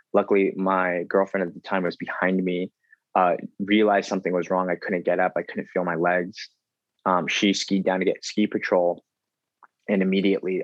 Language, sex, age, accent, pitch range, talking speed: English, male, 20-39, American, 90-100 Hz, 185 wpm